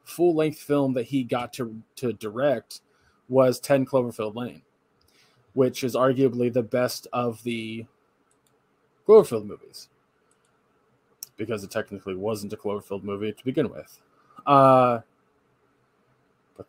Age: 20-39